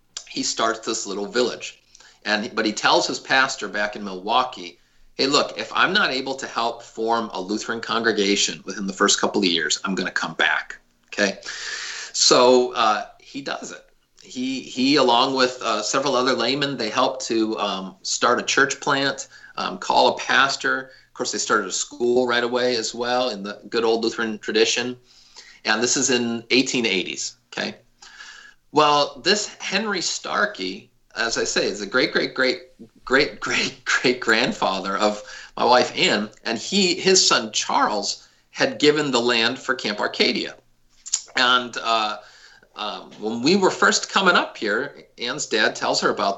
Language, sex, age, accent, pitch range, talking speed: English, male, 40-59, American, 105-130 Hz, 165 wpm